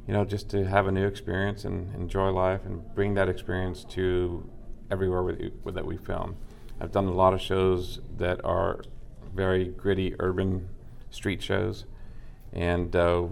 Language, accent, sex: English, American, male